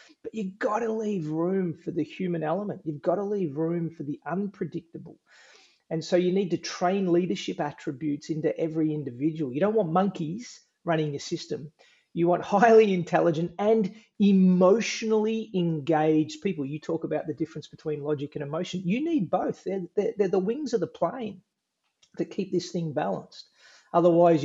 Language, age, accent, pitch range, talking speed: English, 30-49, Australian, 155-190 Hz, 170 wpm